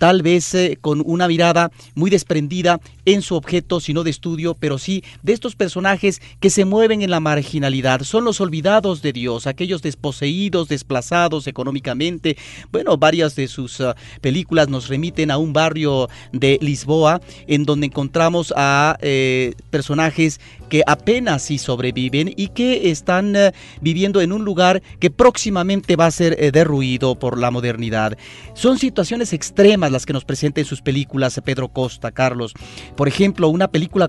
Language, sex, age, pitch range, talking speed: Spanish, male, 40-59, 135-180 Hz, 160 wpm